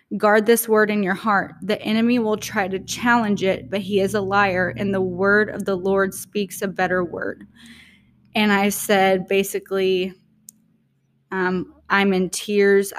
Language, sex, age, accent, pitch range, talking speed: English, female, 20-39, American, 190-215 Hz, 165 wpm